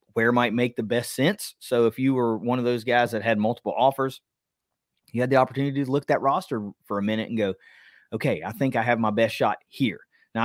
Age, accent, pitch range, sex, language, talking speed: 30-49, American, 110-135 Hz, male, English, 240 wpm